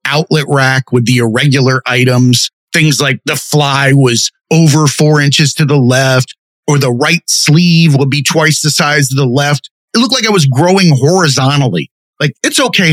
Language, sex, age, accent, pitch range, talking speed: English, male, 30-49, American, 140-185 Hz, 180 wpm